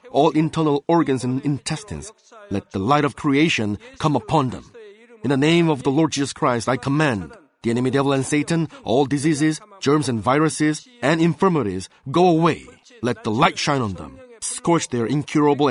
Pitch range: 130-155 Hz